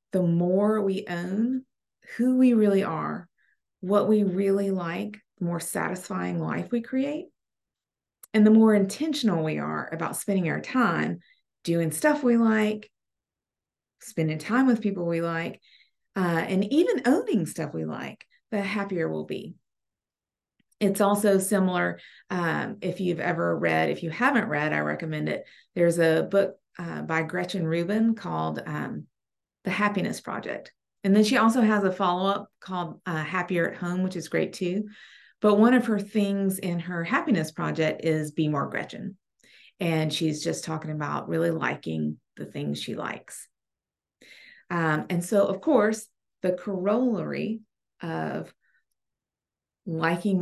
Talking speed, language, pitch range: 150 wpm, English, 165-210 Hz